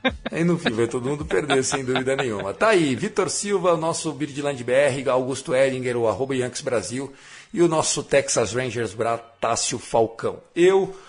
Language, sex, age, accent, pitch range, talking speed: Portuguese, male, 50-69, Brazilian, 115-150 Hz, 170 wpm